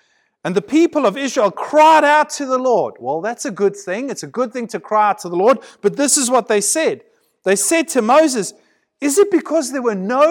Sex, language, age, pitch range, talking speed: male, English, 30-49, 205-290 Hz, 240 wpm